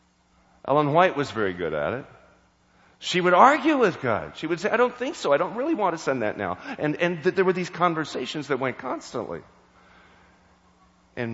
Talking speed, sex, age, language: 195 wpm, male, 40-59, English